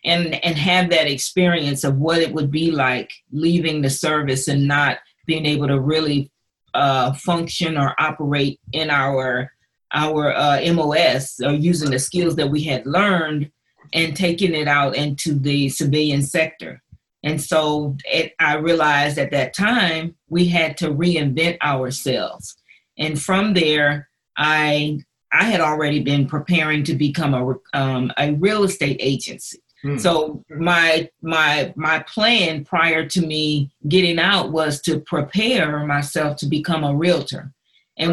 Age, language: 40-59, English